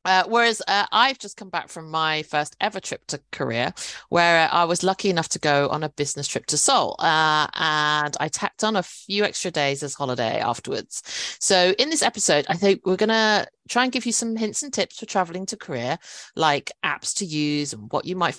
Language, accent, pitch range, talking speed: English, British, 145-195 Hz, 225 wpm